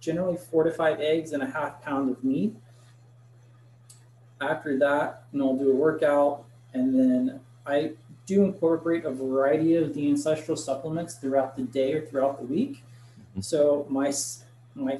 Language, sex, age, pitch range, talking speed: English, male, 20-39, 125-150 Hz, 150 wpm